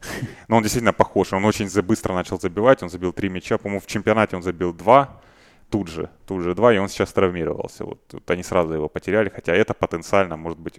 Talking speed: 215 wpm